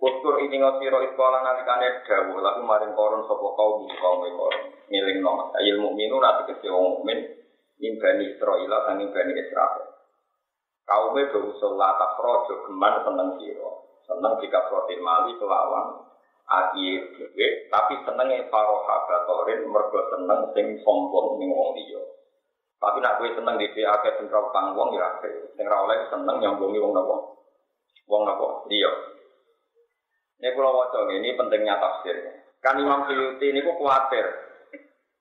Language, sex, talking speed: Indonesian, male, 85 wpm